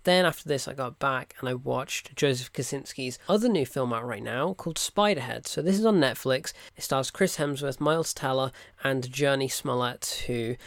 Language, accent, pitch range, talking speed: English, British, 130-180 Hz, 190 wpm